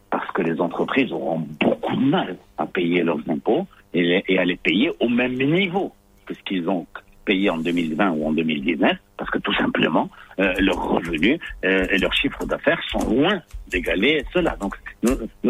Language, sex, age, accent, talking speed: French, male, 60-79, French, 180 wpm